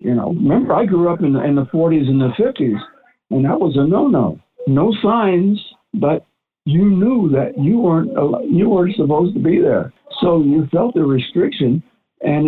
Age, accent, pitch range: 60-79, American, 125-170 Hz